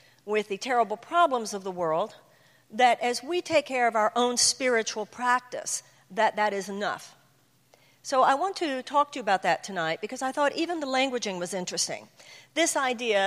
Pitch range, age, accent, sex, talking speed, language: 210-285 Hz, 50-69, American, female, 185 wpm, English